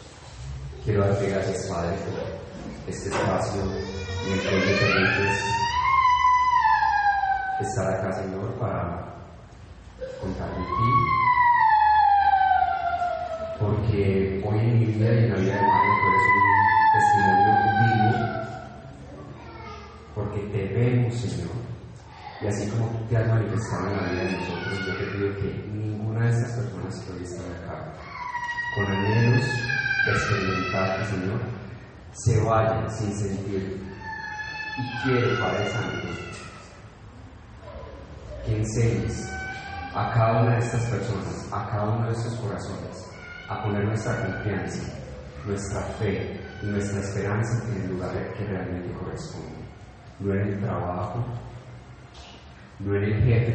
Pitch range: 95-120 Hz